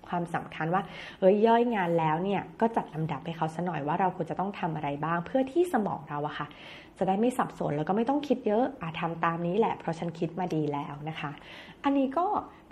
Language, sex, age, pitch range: Thai, female, 20-39, 160-225 Hz